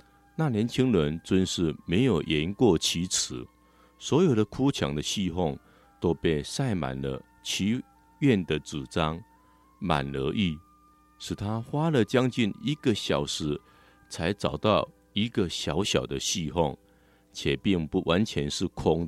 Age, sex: 50-69, male